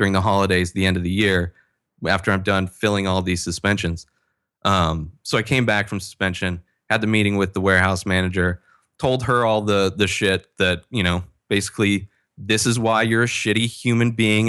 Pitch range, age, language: 95-115 Hz, 20-39, English